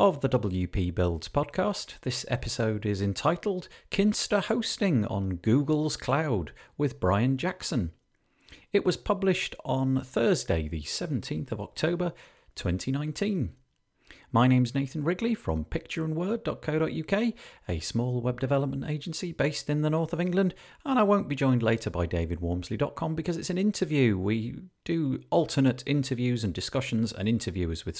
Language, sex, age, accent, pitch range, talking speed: English, male, 40-59, British, 105-155 Hz, 140 wpm